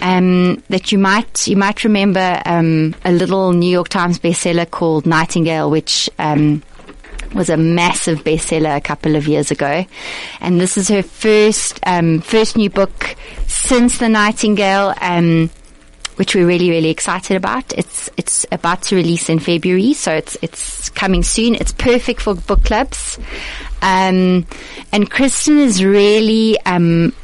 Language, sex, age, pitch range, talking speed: English, female, 30-49, 165-210 Hz, 150 wpm